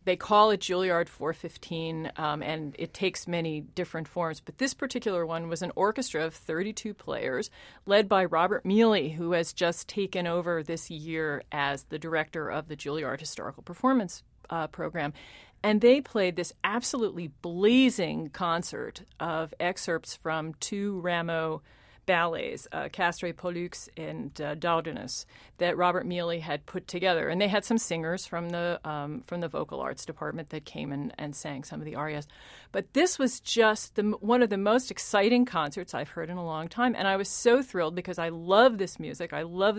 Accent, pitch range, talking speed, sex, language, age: American, 160-205 Hz, 180 wpm, female, English, 40-59